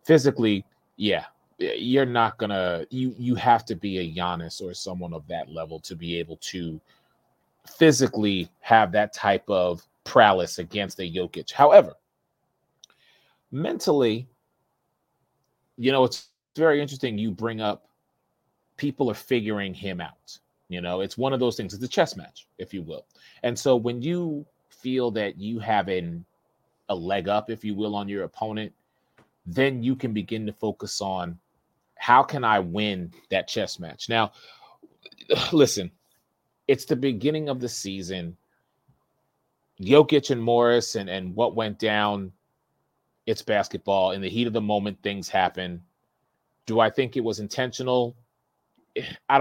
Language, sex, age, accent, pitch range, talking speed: English, male, 30-49, American, 95-130 Hz, 150 wpm